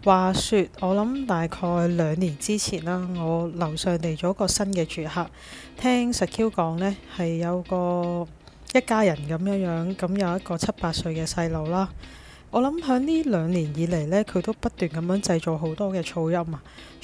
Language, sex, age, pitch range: Chinese, female, 20-39, 170-205 Hz